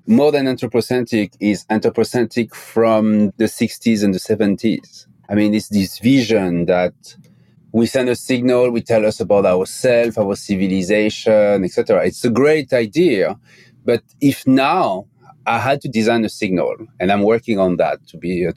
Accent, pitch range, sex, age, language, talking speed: French, 105-130 Hz, male, 30-49, English, 160 wpm